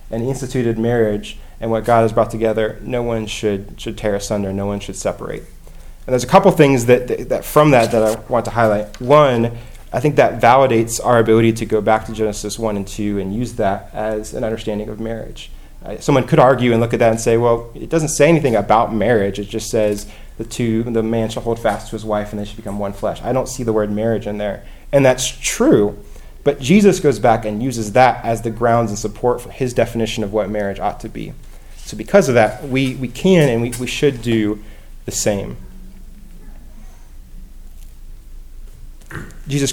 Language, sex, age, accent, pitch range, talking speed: English, male, 30-49, American, 105-125 Hz, 210 wpm